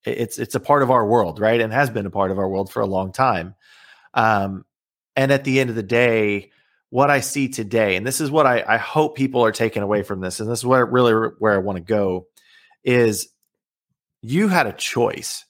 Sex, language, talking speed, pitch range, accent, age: male, English, 230 wpm, 105-130 Hz, American, 30-49